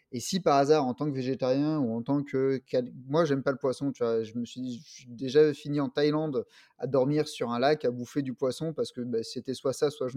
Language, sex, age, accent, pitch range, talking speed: French, male, 20-39, French, 120-150 Hz, 275 wpm